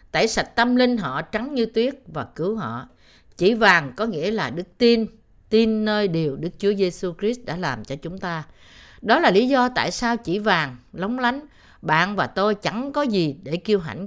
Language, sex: Vietnamese, female